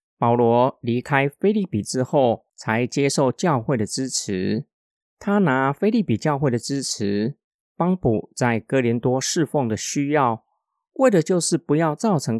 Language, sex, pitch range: Chinese, male, 120-165 Hz